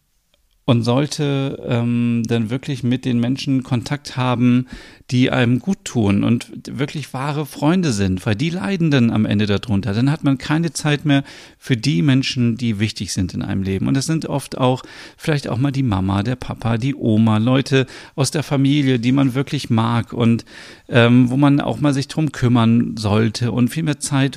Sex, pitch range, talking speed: male, 110-135 Hz, 190 wpm